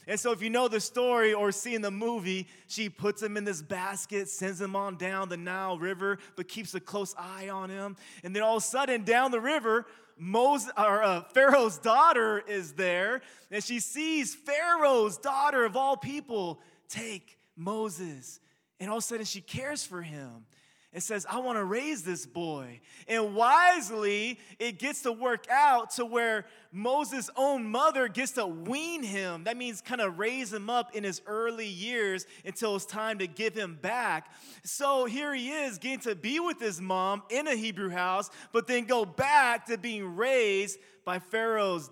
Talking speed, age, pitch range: 190 wpm, 20-39, 190-245 Hz